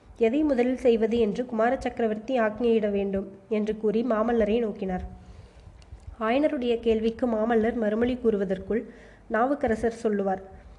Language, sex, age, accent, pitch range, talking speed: Tamil, female, 20-39, native, 210-240 Hz, 105 wpm